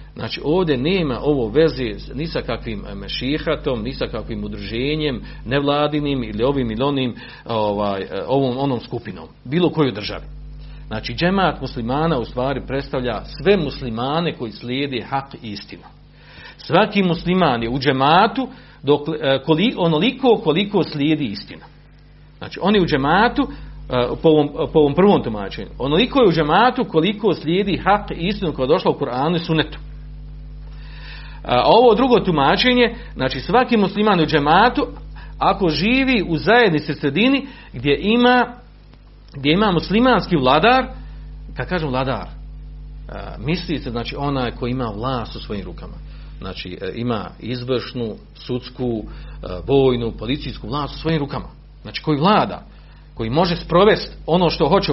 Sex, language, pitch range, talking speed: male, Croatian, 125-170 Hz, 130 wpm